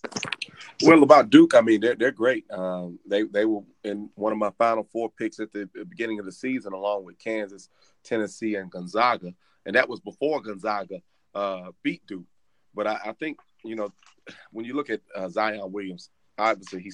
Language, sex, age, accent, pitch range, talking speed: English, male, 30-49, American, 100-130 Hz, 190 wpm